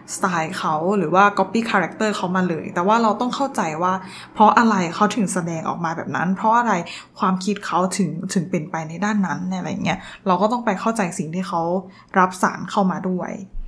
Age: 20-39